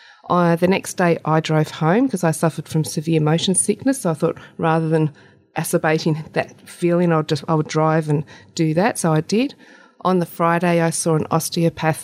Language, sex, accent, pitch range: English, female, Australian, 155-180 Hz